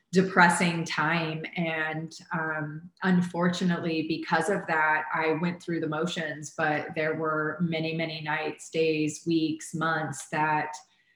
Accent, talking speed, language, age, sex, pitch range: American, 125 wpm, English, 30-49, female, 155-170 Hz